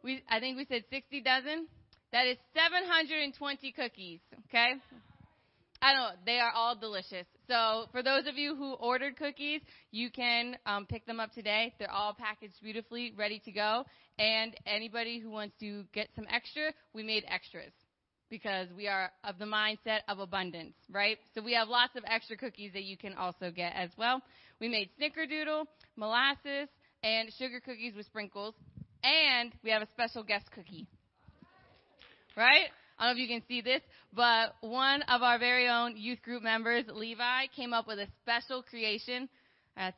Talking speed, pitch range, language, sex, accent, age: 175 wpm, 215-275 Hz, English, female, American, 20-39